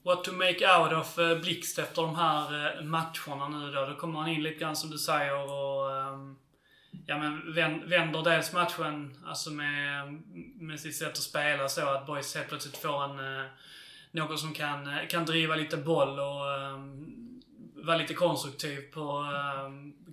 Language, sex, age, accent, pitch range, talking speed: Swedish, male, 20-39, native, 140-165 Hz, 165 wpm